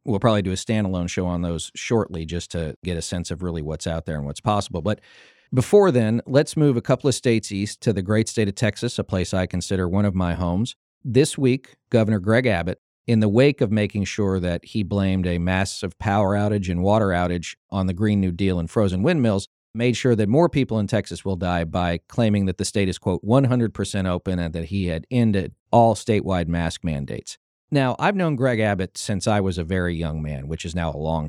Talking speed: 230 wpm